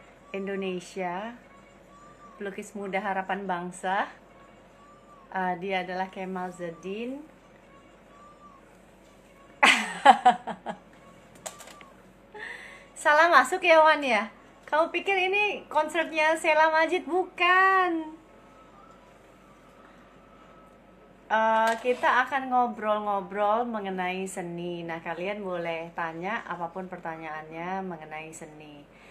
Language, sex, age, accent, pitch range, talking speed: Indonesian, female, 30-49, native, 185-275 Hz, 75 wpm